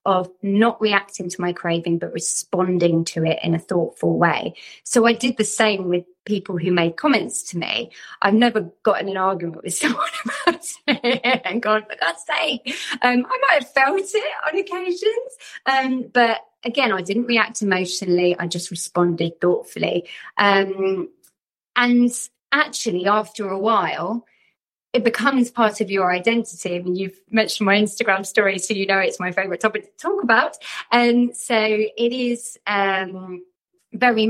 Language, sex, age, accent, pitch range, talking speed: English, female, 30-49, British, 190-265 Hz, 165 wpm